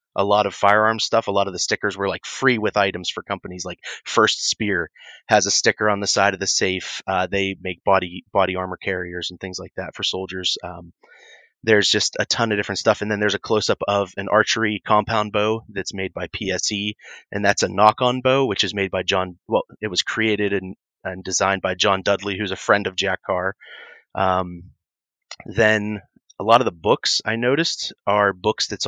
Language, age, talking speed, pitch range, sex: English, 30-49, 215 wpm, 95-110 Hz, male